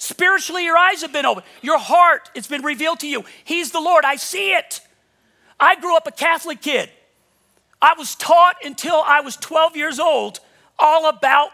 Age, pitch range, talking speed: 40-59, 285-355 Hz, 185 wpm